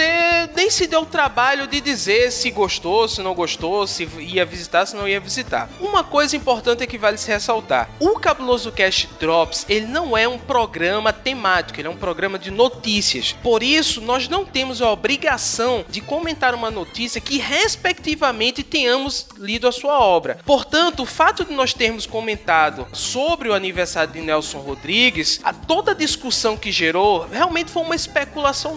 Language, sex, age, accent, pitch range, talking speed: Portuguese, male, 20-39, Brazilian, 205-300 Hz, 175 wpm